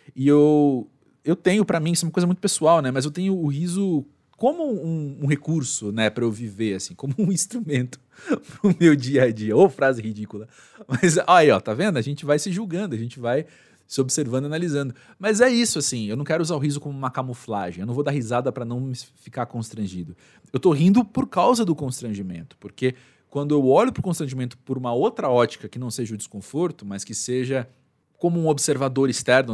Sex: male